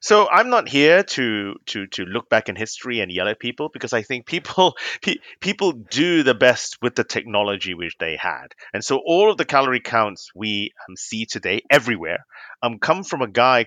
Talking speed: 200 wpm